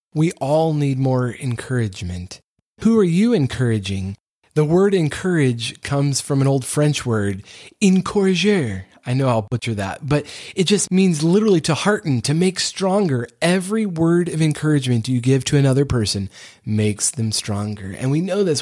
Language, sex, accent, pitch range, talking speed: English, male, American, 110-150 Hz, 160 wpm